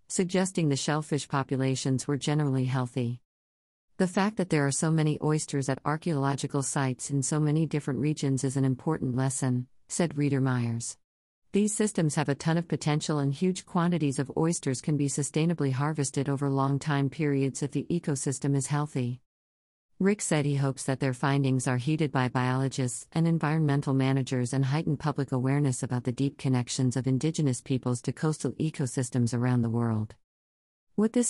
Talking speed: 170 wpm